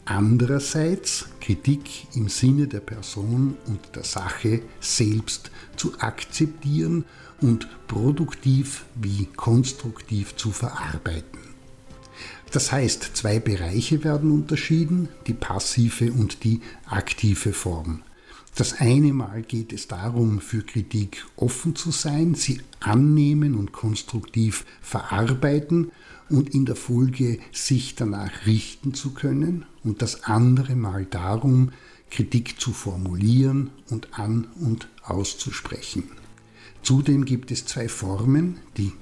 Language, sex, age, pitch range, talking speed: German, male, 60-79, 105-135 Hz, 110 wpm